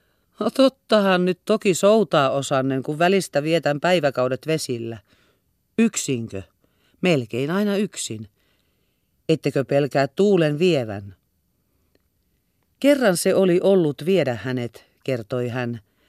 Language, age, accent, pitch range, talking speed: Finnish, 40-59, native, 125-175 Hz, 100 wpm